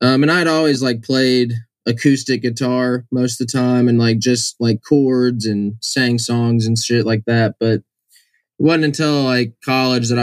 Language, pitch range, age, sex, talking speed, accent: English, 115-130 Hz, 20-39, male, 180 wpm, American